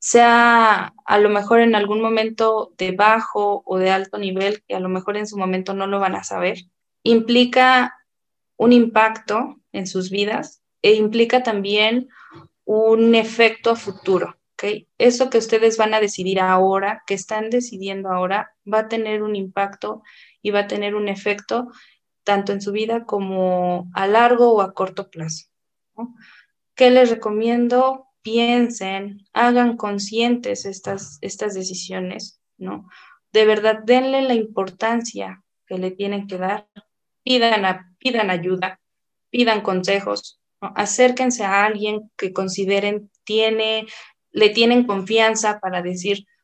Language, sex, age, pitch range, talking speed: Spanish, female, 20-39, 195-230 Hz, 145 wpm